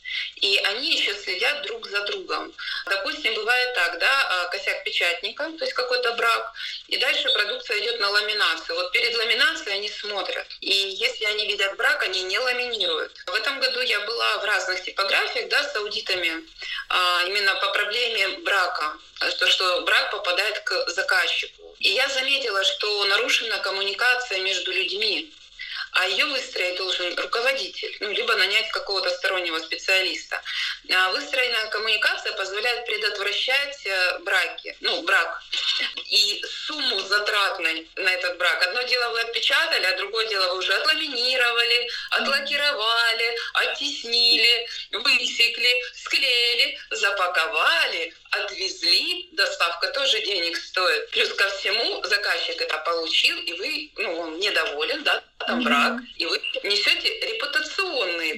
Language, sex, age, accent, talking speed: Russian, female, 20-39, native, 130 wpm